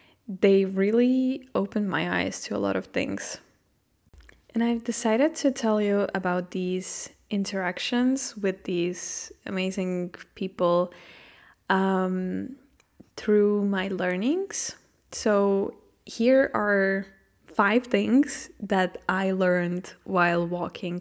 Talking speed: 105 wpm